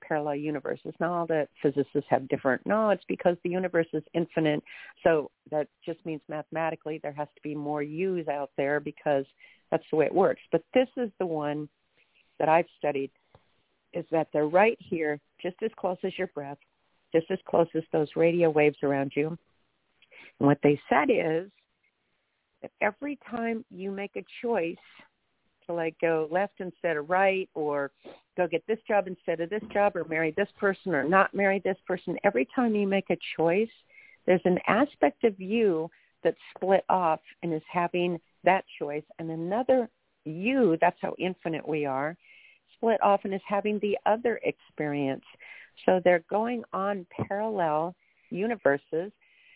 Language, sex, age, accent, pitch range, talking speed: English, female, 50-69, American, 155-200 Hz, 170 wpm